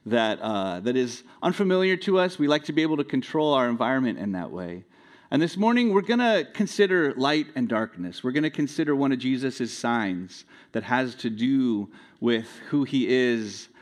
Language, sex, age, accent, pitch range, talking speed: English, male, 40-59, American, 125-175 Hz, 210 wpm